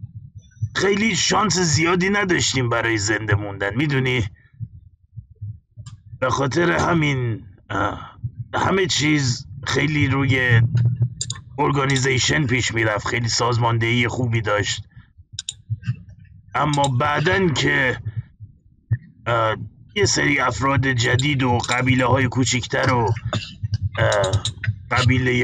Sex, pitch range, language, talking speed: male, 110-130 Hz, Persian, 80 wpm